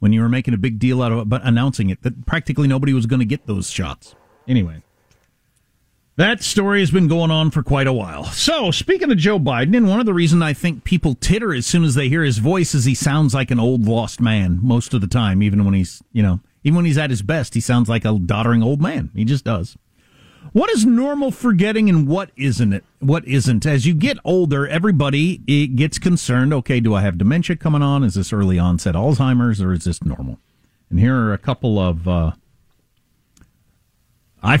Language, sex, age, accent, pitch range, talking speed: English, male, 40-59, American, 110-170 Hz, 220 wpm